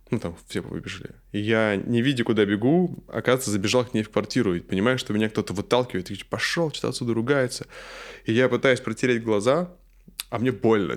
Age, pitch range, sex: 20-39, 105-130 Hz, male